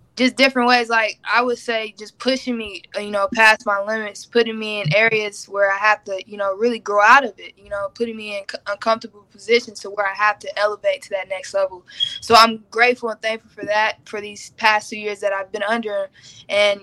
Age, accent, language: 10-29, American, English